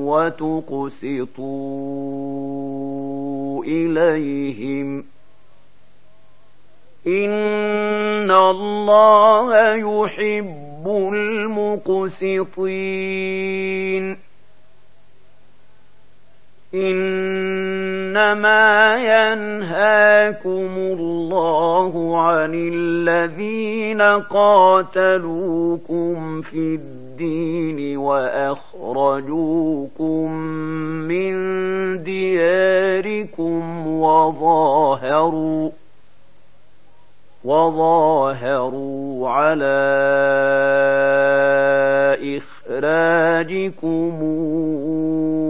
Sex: male